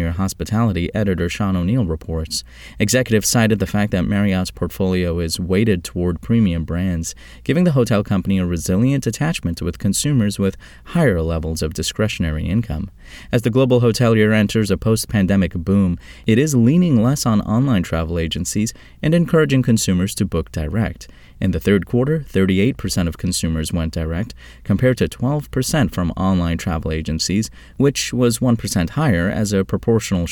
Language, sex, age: English, male, 30-49